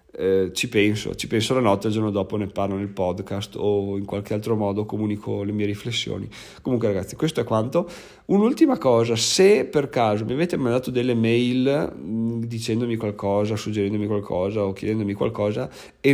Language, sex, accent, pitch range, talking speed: Italian, male, native, 105-125 Hz, 170 wpm